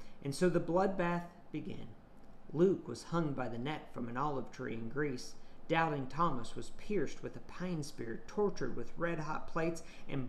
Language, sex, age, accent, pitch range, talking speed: English, male, 50-69, American, 130-170 Hz, 175 wpm